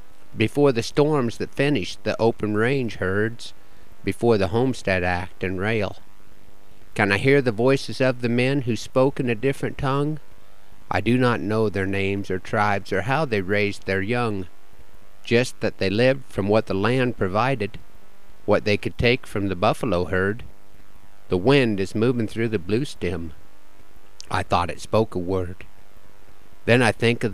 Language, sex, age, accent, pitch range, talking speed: English, male, 50-69, American, 100-120 Hz, 170 wpm